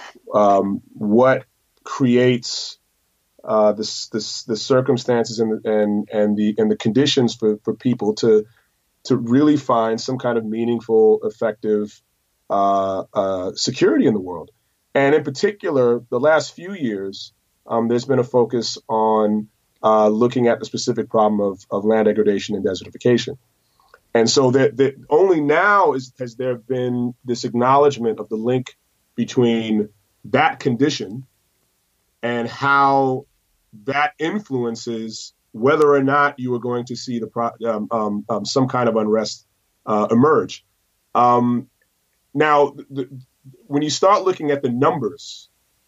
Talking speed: 140 wpm